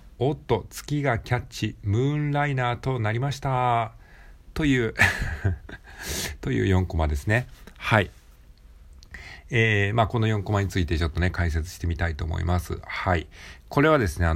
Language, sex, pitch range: Japanese, male, 85-110 Hz